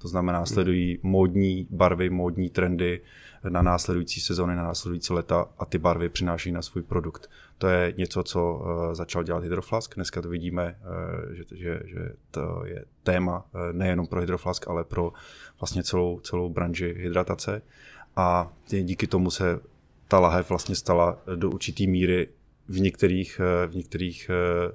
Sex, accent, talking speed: male, native, 140 wpm